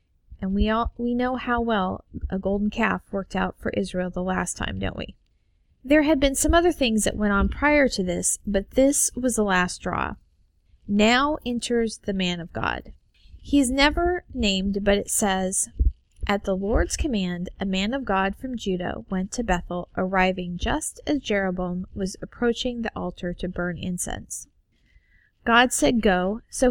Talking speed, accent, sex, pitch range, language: 175 wpm, American, female, 185-240 Hz, English